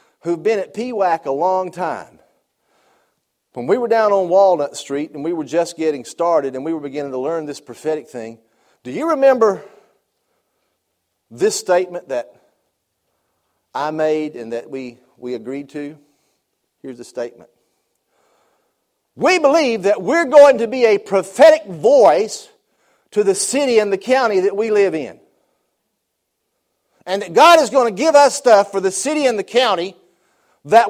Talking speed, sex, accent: 160 wpm, male, American